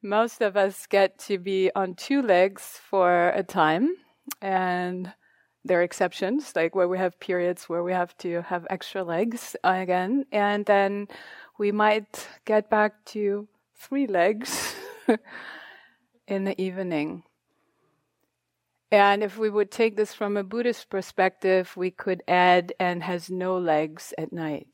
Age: 30-49